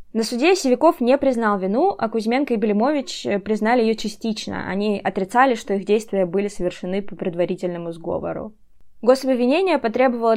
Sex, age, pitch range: female, 20-39, 195-255 Hz